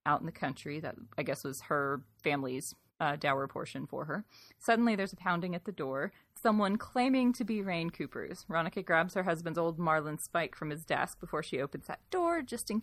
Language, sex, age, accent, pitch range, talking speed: English, female, 30-49, American, 155-235 Hz, 205 wpm